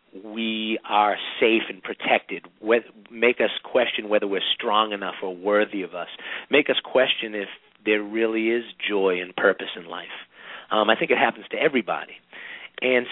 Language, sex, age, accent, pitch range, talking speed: English, male, 40-59, American, 100-125 Hz, 165 wpm